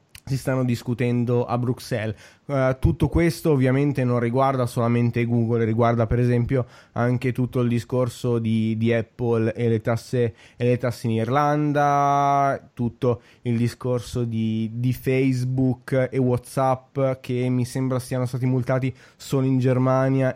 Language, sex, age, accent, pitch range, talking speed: Italian, male, 20-39, native, 115-135 Hz, 135 wpm